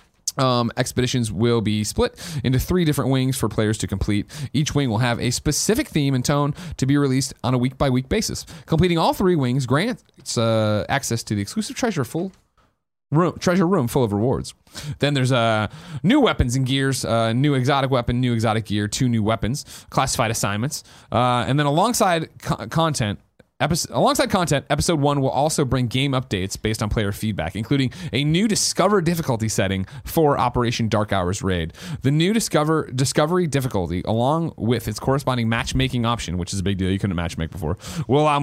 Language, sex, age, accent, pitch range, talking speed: English, male, 30-49, American, 105-145 Hz, 185 wpm